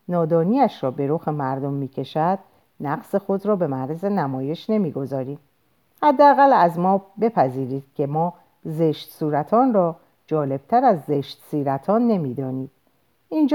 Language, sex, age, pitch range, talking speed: Persian, female, 50-69, 135-205 Hz, 130 wpm